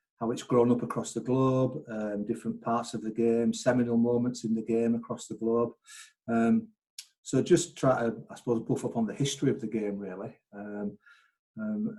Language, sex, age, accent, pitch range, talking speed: English, male, 40-59, British, 110-135 Hz, 195 wpm